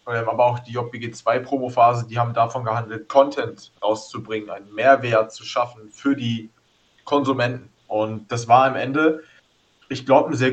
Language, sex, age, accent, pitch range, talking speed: German, male, 20-39, German, 115-140 Hz, 160 wpm